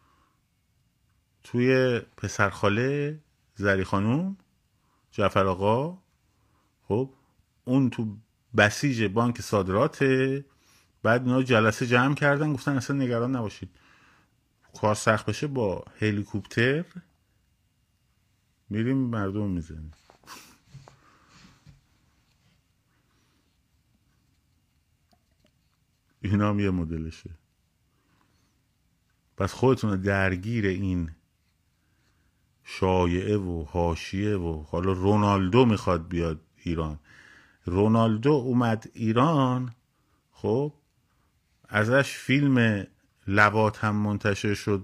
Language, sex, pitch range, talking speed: Persian, male, 95-125 Hz, 70 wpm